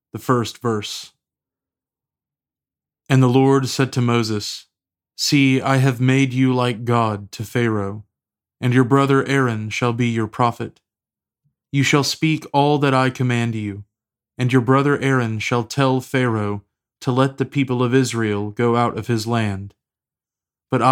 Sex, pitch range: male, 110-130 Hz